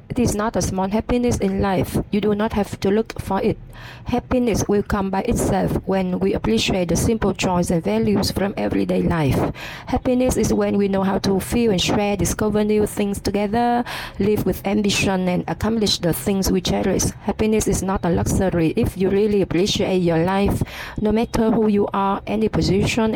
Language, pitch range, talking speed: Vietnamese, 170-215 Hz, 190 wpm